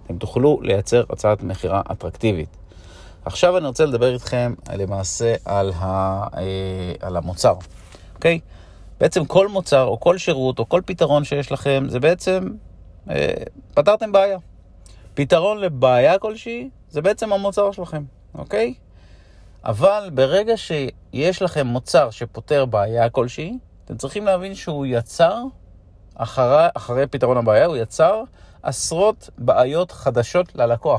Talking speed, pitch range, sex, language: 120 wpm, 95-155 Hz, male, Hebrew